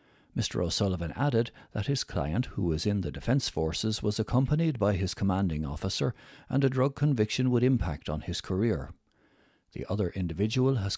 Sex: male